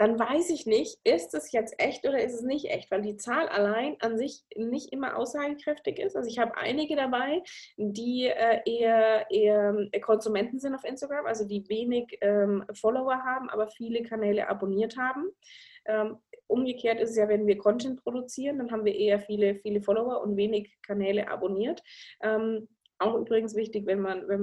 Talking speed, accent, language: 175 wpm, German, German